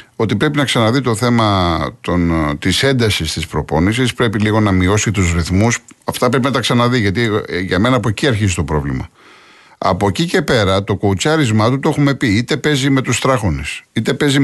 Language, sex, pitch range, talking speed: Greek, male, 90-125 Hz, 190 wpm